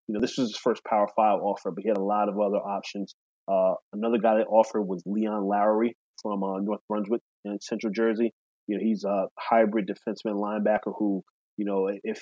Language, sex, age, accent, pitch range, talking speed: English, male, 20-39, American, 100-115 Hz, 210 wpm